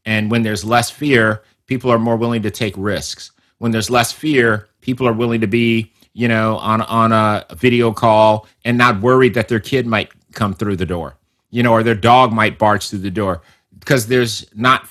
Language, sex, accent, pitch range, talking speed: English, male, American, 110-130 Hz, 210 wpm